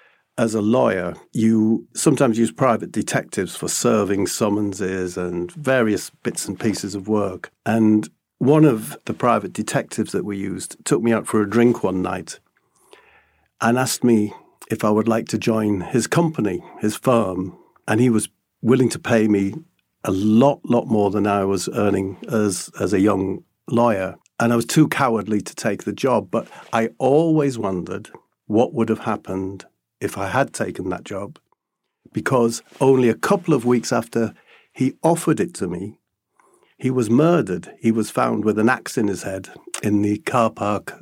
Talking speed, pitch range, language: 175 wpm, 100-120 Hz, English